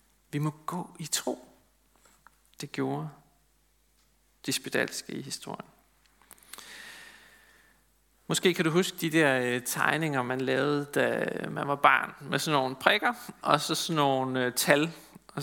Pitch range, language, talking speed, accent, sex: 140-180 Hz, Danish, 130 wpm, native, male